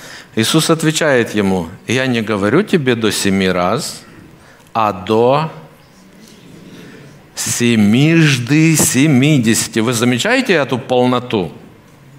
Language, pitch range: Russian, 125-165 Hz